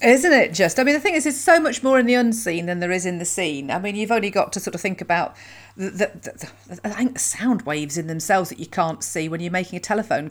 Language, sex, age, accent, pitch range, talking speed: English, female, 40-59, British, 180-235 Hz, 285 wpm